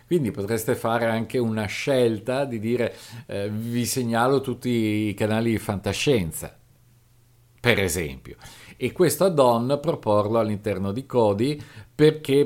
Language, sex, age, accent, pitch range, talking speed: Italian, male, 50-69, native, 100-135 Hz, 125 wpm